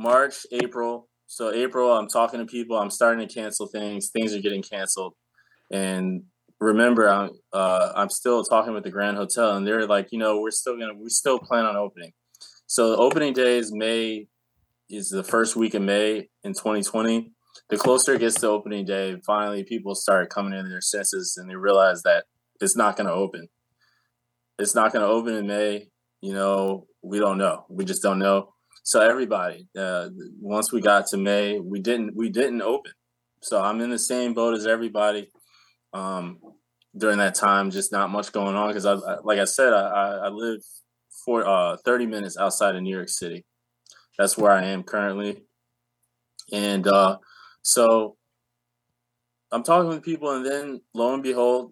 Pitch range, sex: 100-120 Hz, male